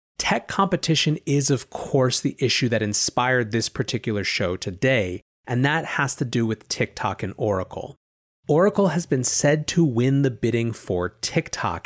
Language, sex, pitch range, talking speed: English, male, 110-140 Hz, 160 wpm